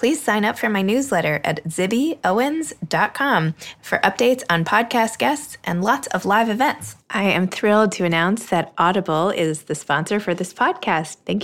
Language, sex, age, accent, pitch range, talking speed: English, female, 20-39, American, 165-210 Hz, 170 wpm